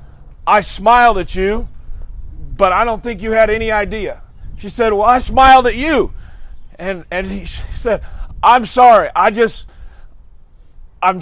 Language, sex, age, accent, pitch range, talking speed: English, male, 40-59, American, 190-245 Hz, 155 wpm